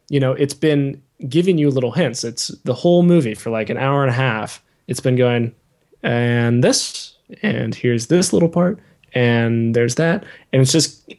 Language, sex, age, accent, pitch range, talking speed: English, male, 20-39, American, 115-145 Hz, 190 wpm